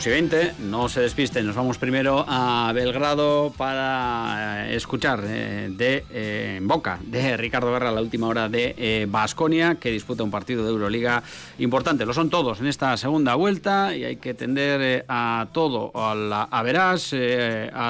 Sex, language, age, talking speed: male, Spanish, 30-49, 170 wpm